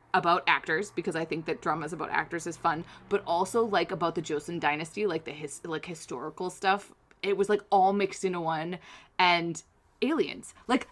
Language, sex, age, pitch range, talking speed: English, female, 20-39, 170-245 Hz, 190 wpm